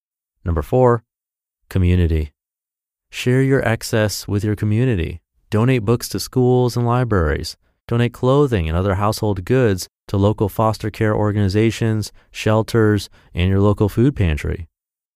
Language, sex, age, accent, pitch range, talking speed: English, male, 30-49, American, 90-120 Hz, 125 wpm